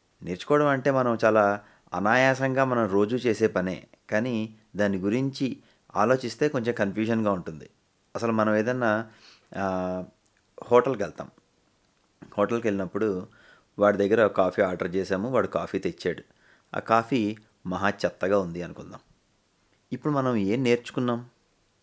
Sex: male